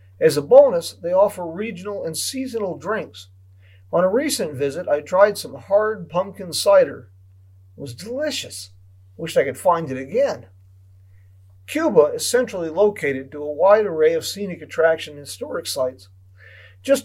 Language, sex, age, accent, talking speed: English, male, 40-59, American, 155 wpm